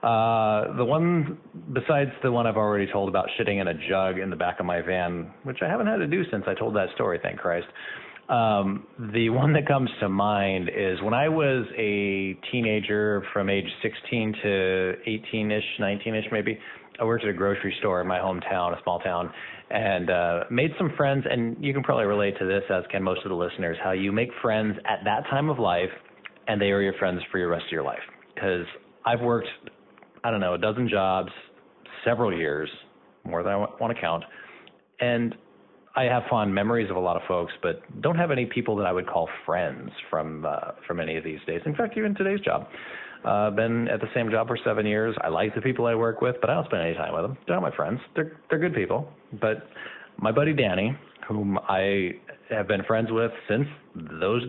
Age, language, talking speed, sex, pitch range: 30-49, English, 220 wpm, male, 95-120 Hz